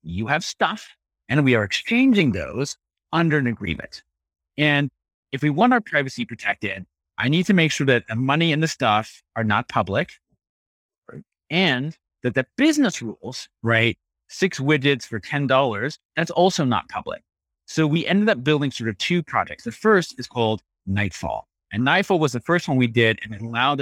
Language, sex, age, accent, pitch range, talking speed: English, male, 30-49, American, 110-150 Hz, 180 wpm